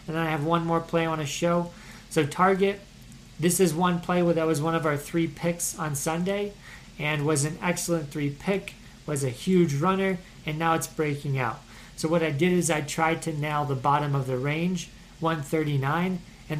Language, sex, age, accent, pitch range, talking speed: English, male, 40-59, American, 145-170 Hz, 210 wpm